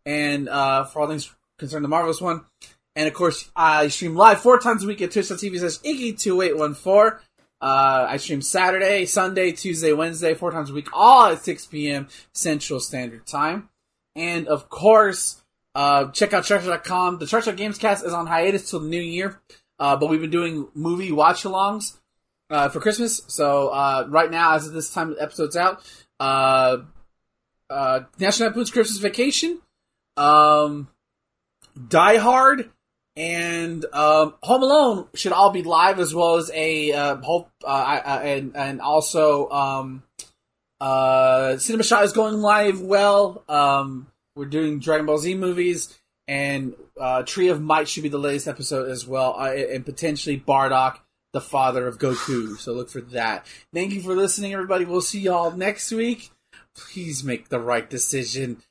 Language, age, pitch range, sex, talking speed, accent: English, 20-39, 140-190 Hz, male, 165 wpm, American